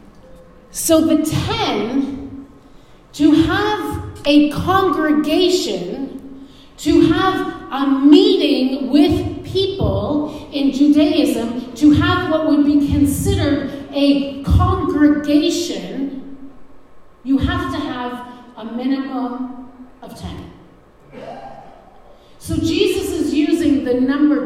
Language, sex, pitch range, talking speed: English, female, 270-325 Hz, 90 wpm